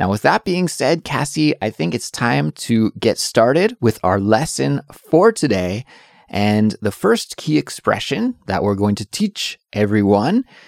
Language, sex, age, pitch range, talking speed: English, male, 20-39, 100-160 Hz, 165 wpm